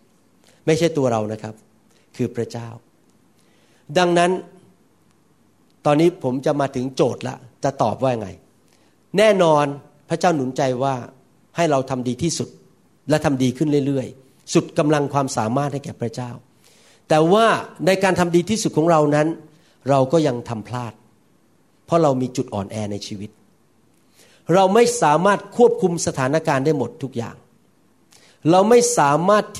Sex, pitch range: male, 125-180 Hz